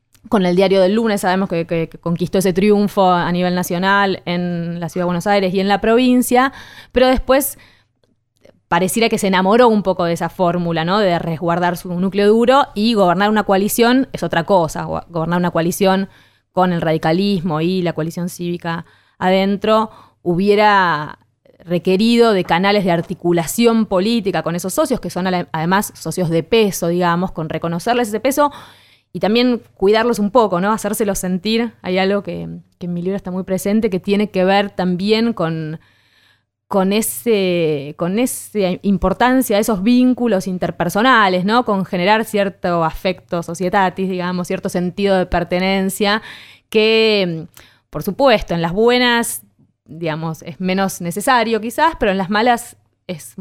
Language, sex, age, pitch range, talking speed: Spanish, female, 20-39, 170-210 Hz, 155 wpm